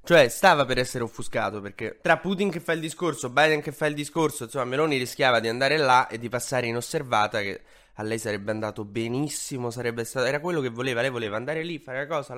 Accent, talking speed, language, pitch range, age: native, 225 wpm, Italian, 125-160 Hz, 20-39